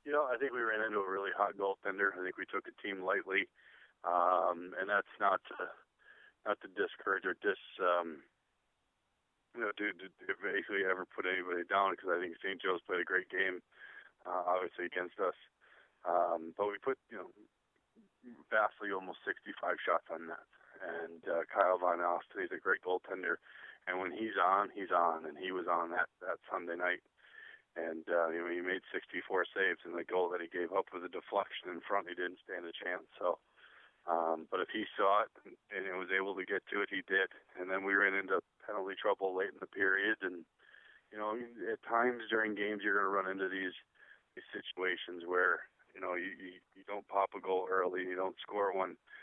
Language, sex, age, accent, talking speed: English, male, 20-39, American, 210 wpm